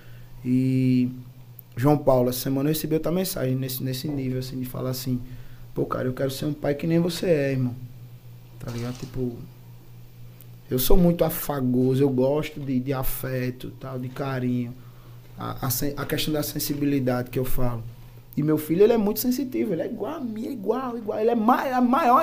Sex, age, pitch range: male, 20-39, 125-195 Hz